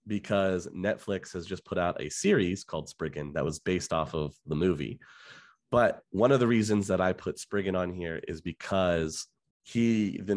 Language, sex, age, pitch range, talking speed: English, male, 30-49, 85-105 Hz, 185 wpm